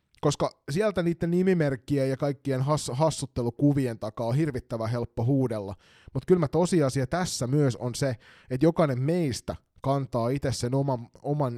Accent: native